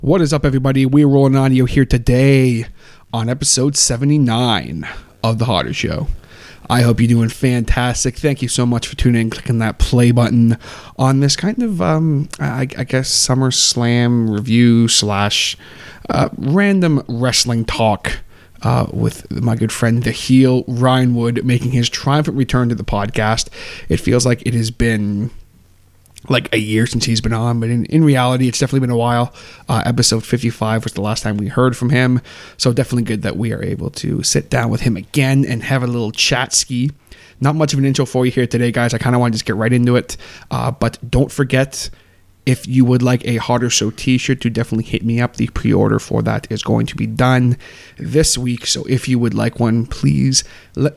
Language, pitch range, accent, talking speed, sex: English, 115-130 Hz, American, 205 wpm, male